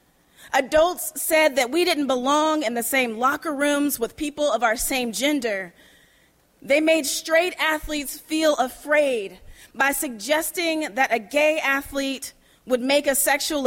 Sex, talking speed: female, 145 wpm